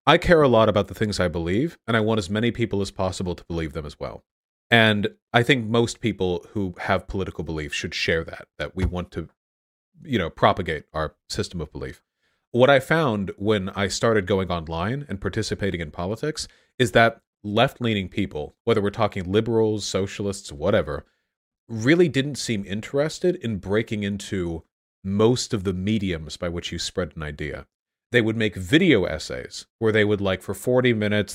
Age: 40-59